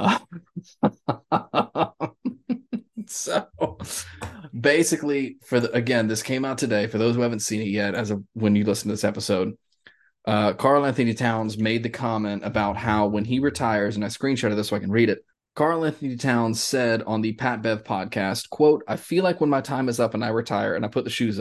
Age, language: 20-39, English